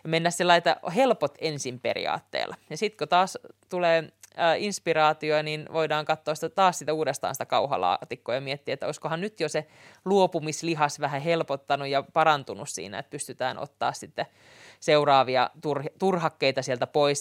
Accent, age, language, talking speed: native, 30-49, Finnish, 145 wpm